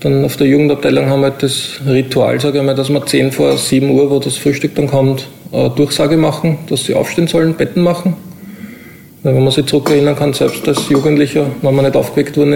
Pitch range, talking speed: 135-150 Hz, 210 wpm